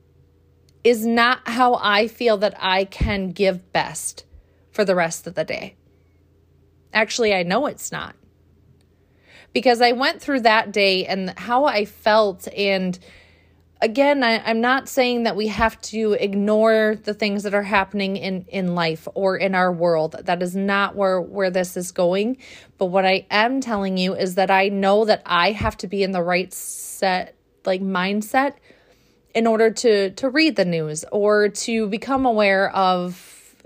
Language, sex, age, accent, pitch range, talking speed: English, female, 30-49, American, 180-225 Hz, 170 wpm